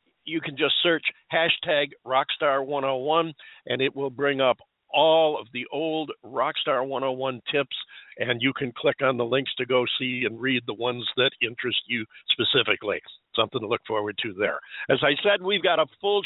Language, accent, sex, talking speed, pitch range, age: English, American, male, 205 wpm, 130-170 Hz, 50-69